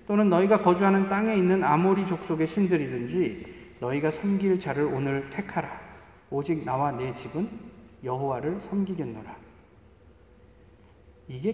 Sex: male